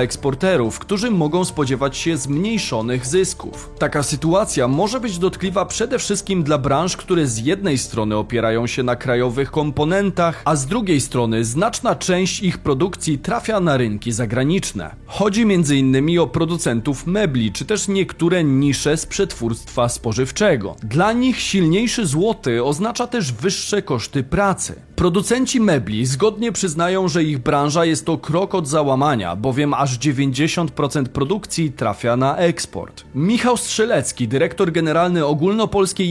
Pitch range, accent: 135-195 Hz, native